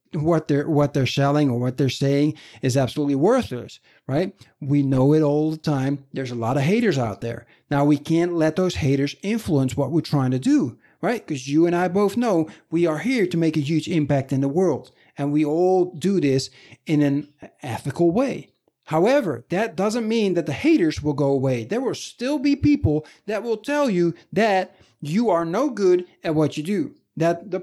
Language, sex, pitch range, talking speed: English, male, 135-180 Hz, 205 wpm